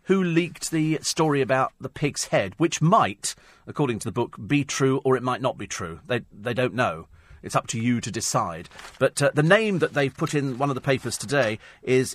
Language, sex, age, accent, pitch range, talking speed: English, male, 40-59, British, 120-155 Hz, 225 wpm